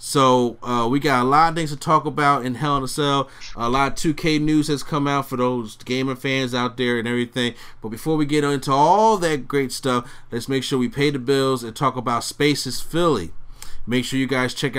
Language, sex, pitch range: English, male, 125-145 Hz